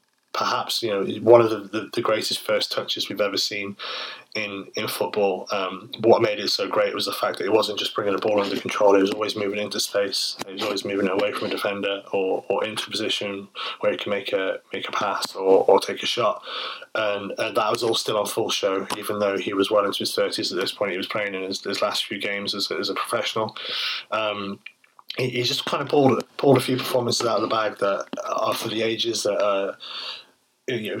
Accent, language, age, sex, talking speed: British, English, 20-39, male, 240 wpm